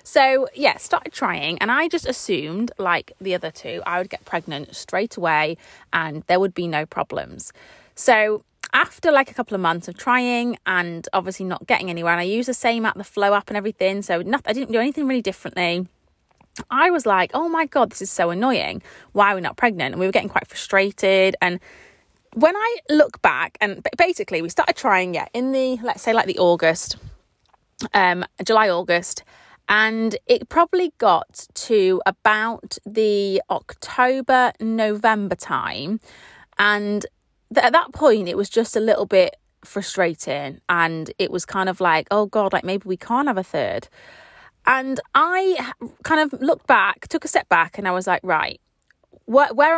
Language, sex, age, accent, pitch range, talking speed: English, female, 20-39, British, 180-250 Hz, 185 wpm